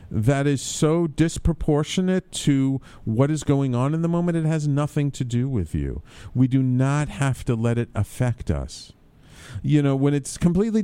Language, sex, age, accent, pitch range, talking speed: English, male, 50-69, American, 105-150 Hz, 185 wpm